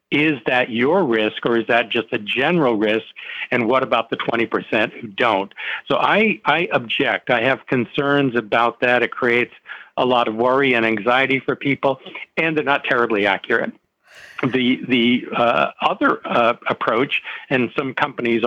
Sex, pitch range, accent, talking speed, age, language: male, 115-140 Hz, American, 165 wpm, 60-79, English